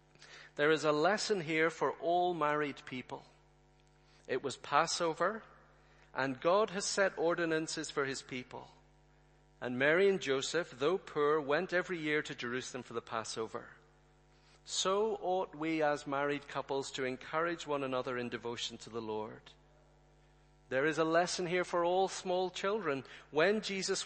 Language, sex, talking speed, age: English, male, 150 wpm, 40-59